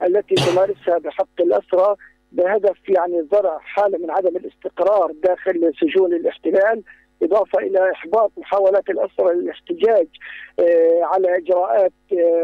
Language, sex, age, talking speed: Arabic, male, 50-69, 105 wpm